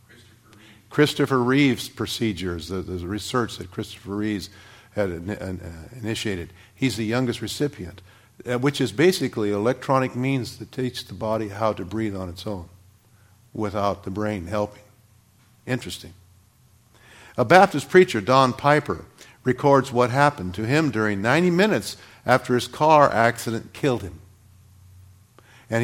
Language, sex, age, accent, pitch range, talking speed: English, male, 50-69, American, 100-130 Hz, 130 wpm